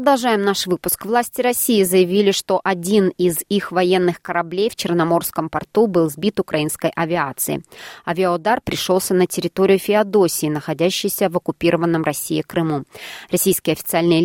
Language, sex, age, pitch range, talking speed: Russian, female, 20-39, 165-200 Hz, 130 wpm